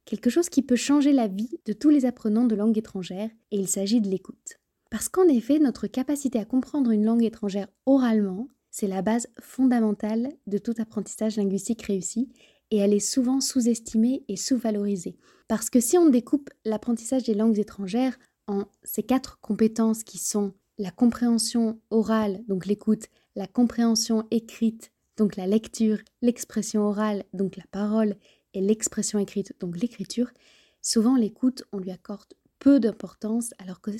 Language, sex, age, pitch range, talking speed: French, female, 20-39, 205-250 Hz, 160 wpm